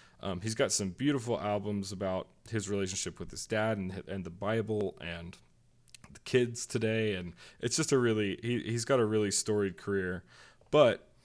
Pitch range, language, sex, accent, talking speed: 100-120 Hz, English, male, American, 175 wpm